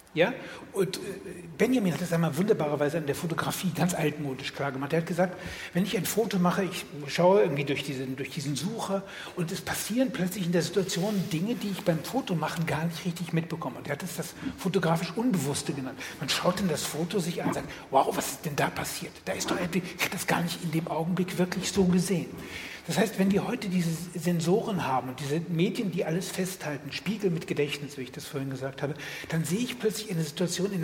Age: 60-79